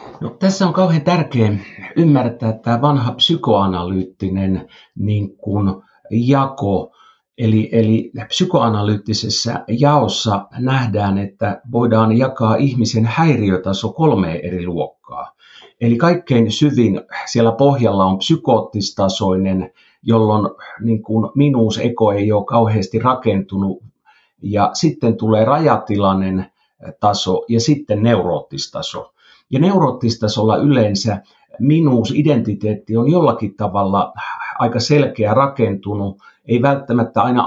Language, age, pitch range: Finnish, 50-69, 100-130 Hz